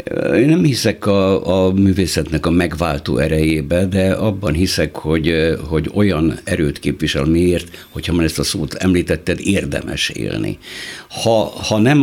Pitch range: 80-105 Hz